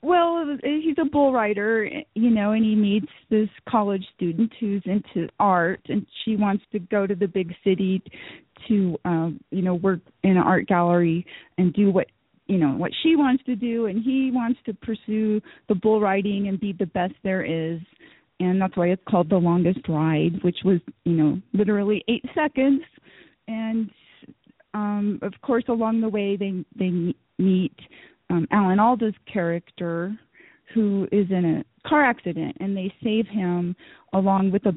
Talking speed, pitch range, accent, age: 175 wpm, 180-220 Hz, American, 30-49